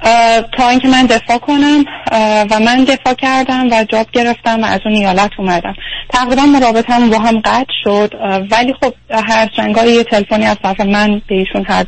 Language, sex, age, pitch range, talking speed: Persian, female, 10-29, 205-245 Hz, 175 wpm